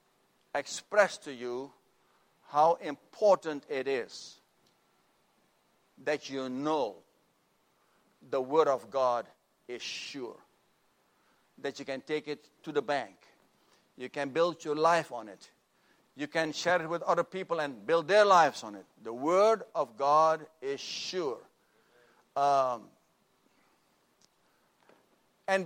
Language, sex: English, male